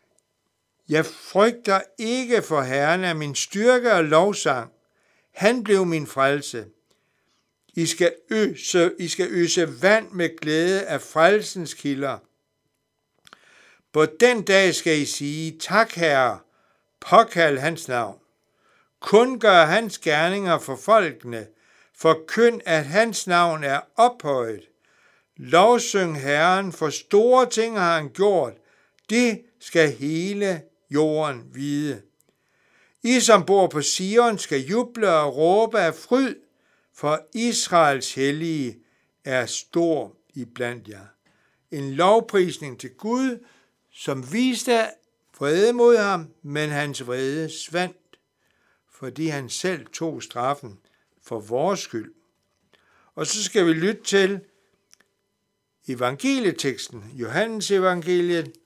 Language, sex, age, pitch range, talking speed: Danish, male, 60-79, 145-210 Hz, 115 wpm